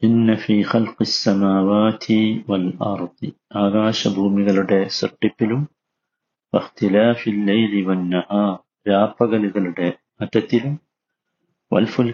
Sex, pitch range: male, 105-120 Hz